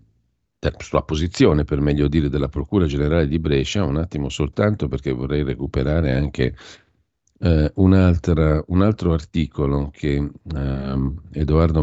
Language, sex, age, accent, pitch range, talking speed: Italian, male, 50-69, native, 70-85 Hz, 120 wpm